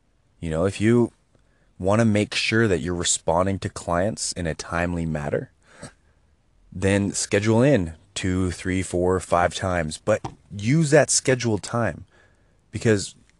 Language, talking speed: English, 140 wpm